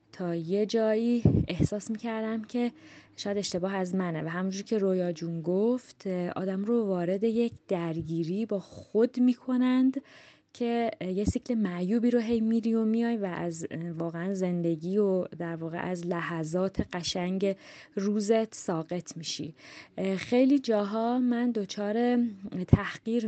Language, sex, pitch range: Persian, female, 175-225 Hz